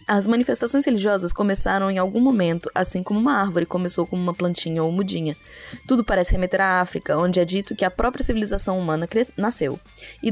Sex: female